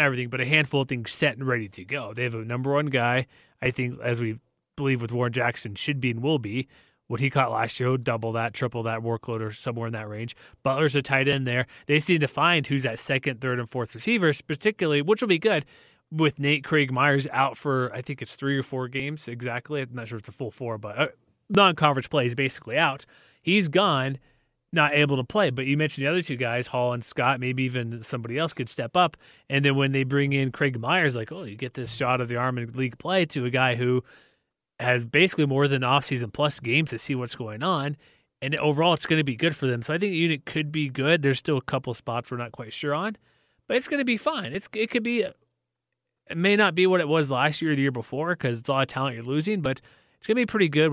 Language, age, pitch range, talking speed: English, 20-39, 125-155 Hz, 255 wpm